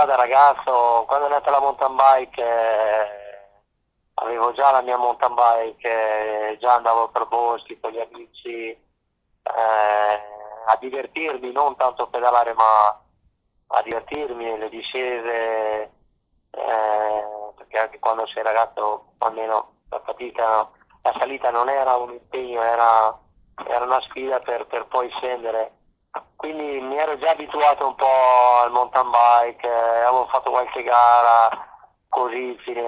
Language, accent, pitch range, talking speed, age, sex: Italian, native, 110-130 Hz, 135 wpm, 20-39, male